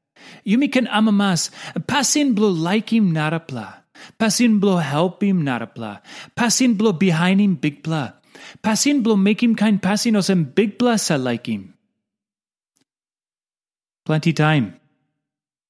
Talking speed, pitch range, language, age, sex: 140 wpm, 145-205 Hz, English, 30-49, male